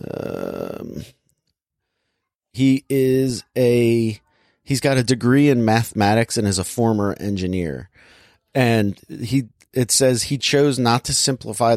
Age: 30-49